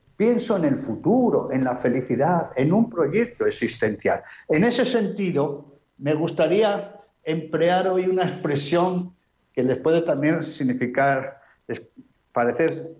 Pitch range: 140-210 Hz